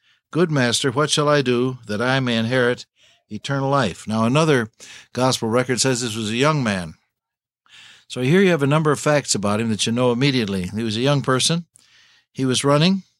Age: 60-79